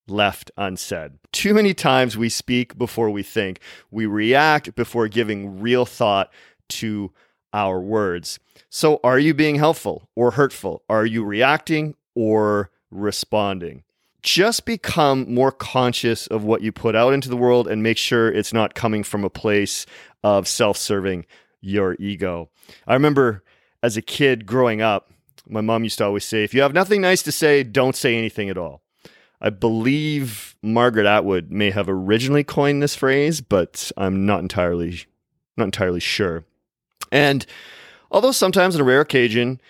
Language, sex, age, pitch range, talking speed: English, male, 40-59, 105-140 Hz, 160 wpm